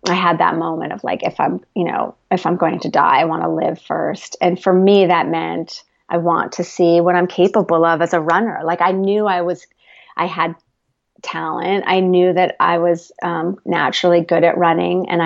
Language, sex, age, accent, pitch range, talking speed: English, female, 30-49, American, 165-190 Hz, 215 wpm